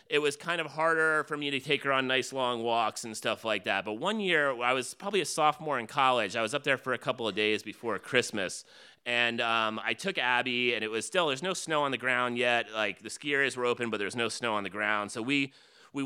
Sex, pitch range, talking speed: male, 115-140 Hz, 265 wpm